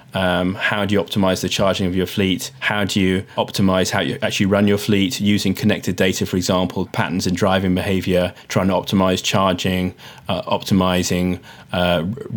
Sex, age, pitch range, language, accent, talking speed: male, 20-39, 95-110 Hz, English, British, 175 wpm